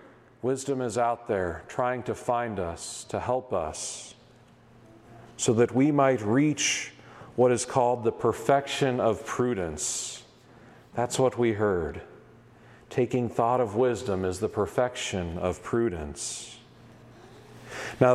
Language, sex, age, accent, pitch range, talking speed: English, male, 40-59, American, 110-135 Hz, 120 wpm